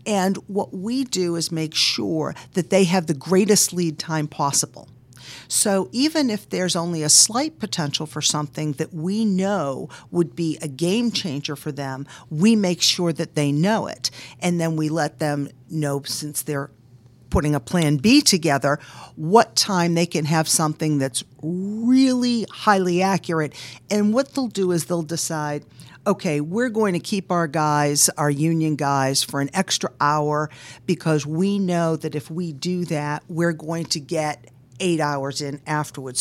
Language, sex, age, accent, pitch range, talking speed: English, female, 50-69, American, 145-185 Hz, 170 wpm